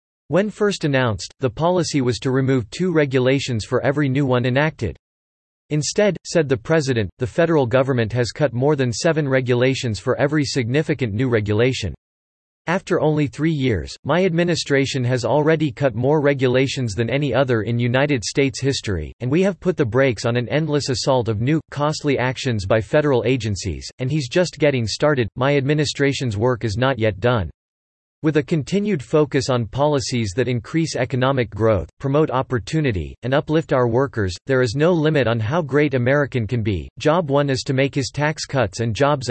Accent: American